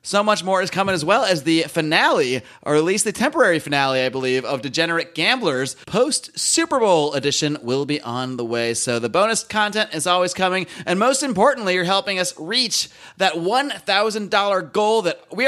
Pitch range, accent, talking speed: 150-200 Hz, American, 185 wpm